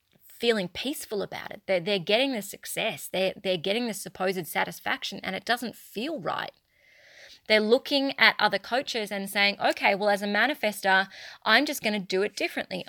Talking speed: 180 wpm